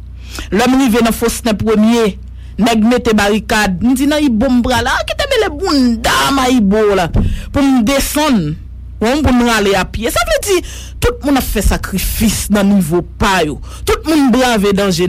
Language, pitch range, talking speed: English, 195-265 Hz, 205 wpm